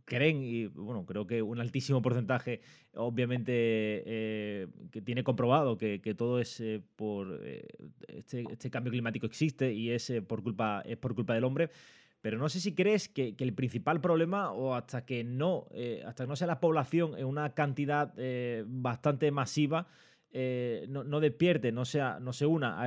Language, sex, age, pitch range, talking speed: Spanish, male, 20-39, 115-145 Hz, 185 wpm